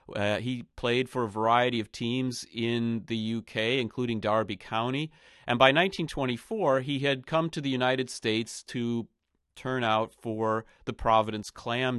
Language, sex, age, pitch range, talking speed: English, male, 40-59, 110-130 Hz, 155 wpm